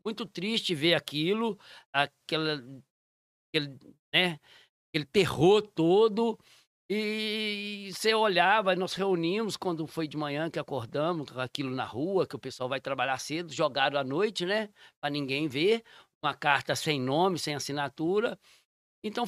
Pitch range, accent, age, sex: 140-190 Hz, Brazilian, 60-79, male